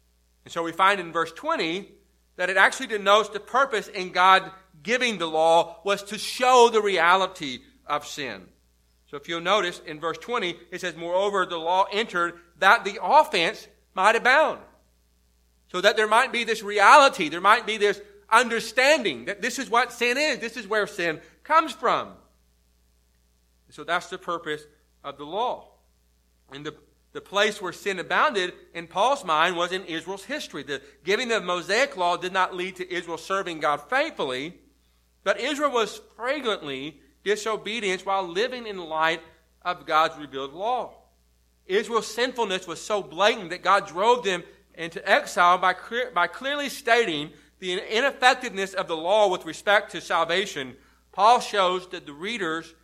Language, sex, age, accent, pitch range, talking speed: English, male, 40-59, American, 160-215 Hz, 165 wpm